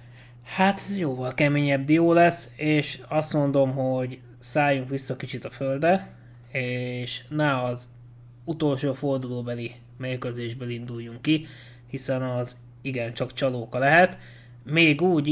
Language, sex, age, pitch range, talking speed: Hungarian, male, 20-39, 120-140 Hz, 120 wpm